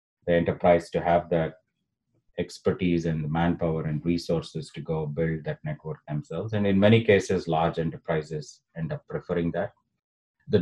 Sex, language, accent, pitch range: male, English, Indian, 85-100 Hz